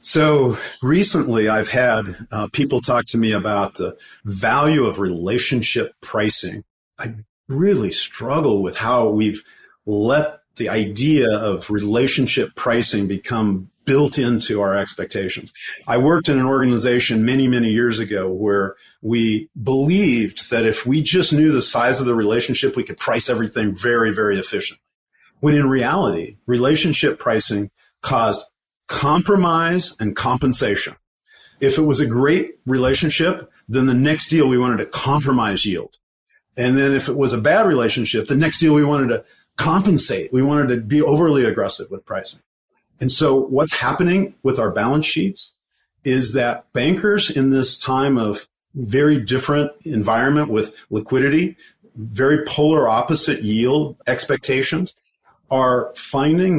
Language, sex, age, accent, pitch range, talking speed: English, male, 50-69, American, 110-150 Hz, 145 wpm